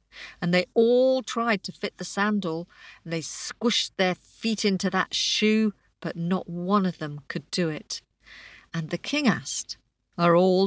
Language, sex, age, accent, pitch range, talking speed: English, female, 50-69, British, 165-235 Hz, 170 wpm